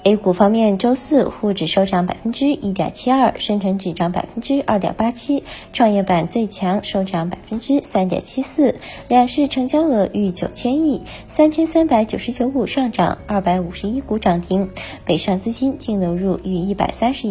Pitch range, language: 190-260 Hz, Chinese